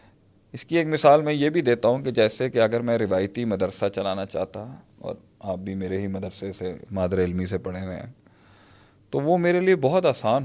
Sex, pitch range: male, 95-110 Hz